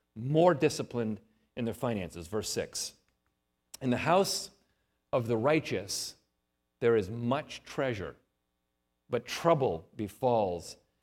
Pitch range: 115-170 Hz